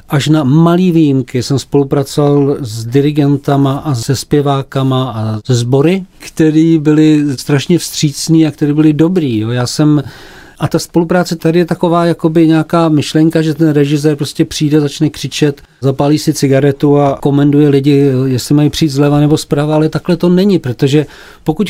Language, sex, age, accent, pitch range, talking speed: Czech, male, 40-59, native, 140-165 Hz, 160 wpm